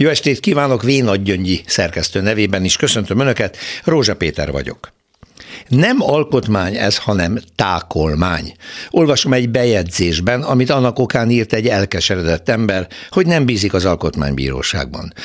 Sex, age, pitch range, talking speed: male, 60-79, 95-130 Hz, 125 wpm